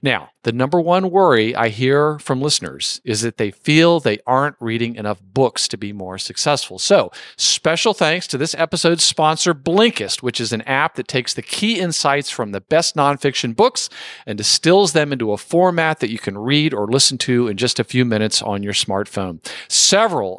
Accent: American